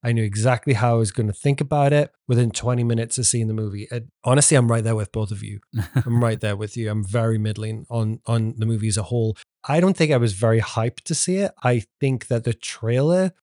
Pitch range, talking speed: 110-130 Hz, 255 wpm